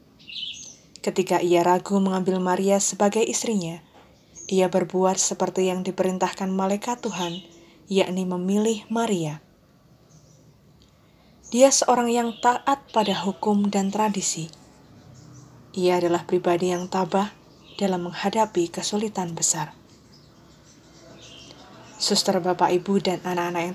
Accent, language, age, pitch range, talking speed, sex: native, Indonesian, 20-39, 175-205 Hz, 100 wpm, female